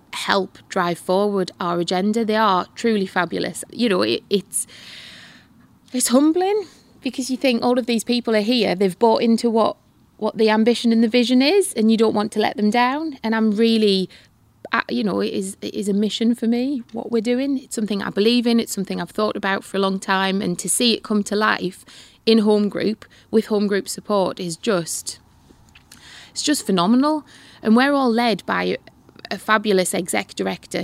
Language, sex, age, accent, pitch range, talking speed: English, female, 20-39, British, 195-235 Hz, 195 wpm